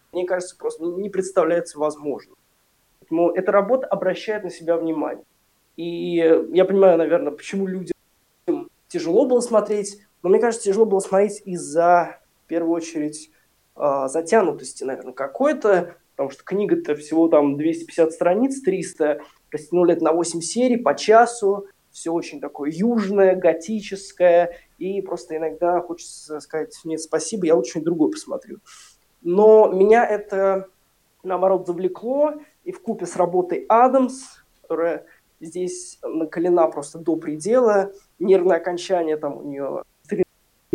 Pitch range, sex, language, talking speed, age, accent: 165-210 Hz, male, Ukrainian, 130 wpm, 20-39, native